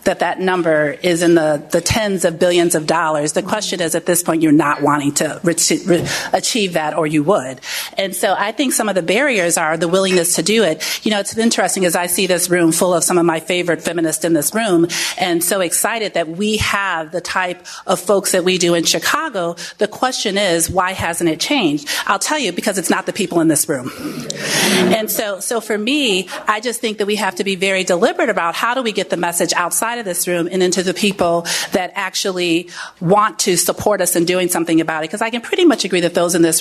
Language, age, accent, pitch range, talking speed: English, 40-59, American, 170-205 Hz, 235 wpm